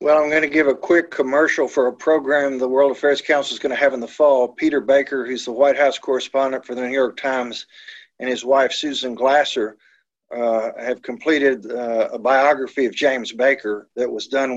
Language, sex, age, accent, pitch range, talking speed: English, male, 50-69, American, 125-150 Hz, 210 wpm